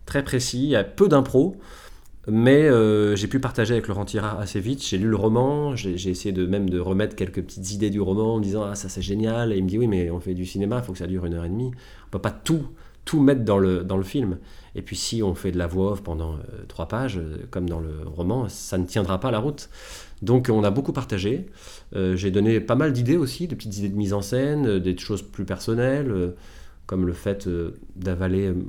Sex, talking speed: male, 250 wpm